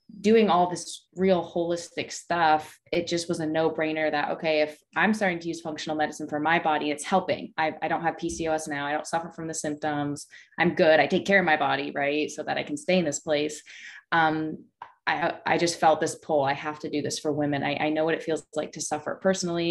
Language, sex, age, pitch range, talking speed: English, female, 20-39, 150-180 Hz, 240 wpm